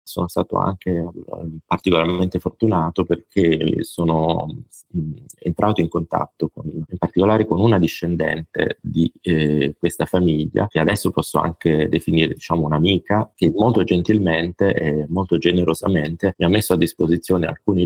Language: Italian